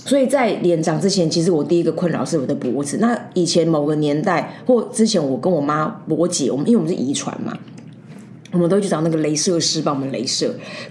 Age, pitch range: 20-39, 165-220 Hz